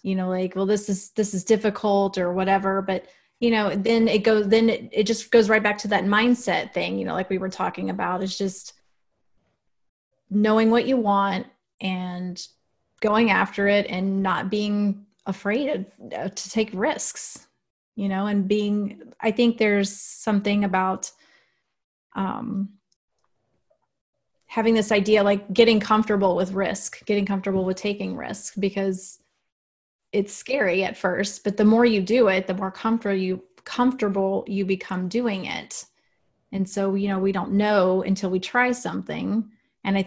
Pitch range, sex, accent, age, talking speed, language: 190-210 Hz, female, American, 30-49, 165 wpm, English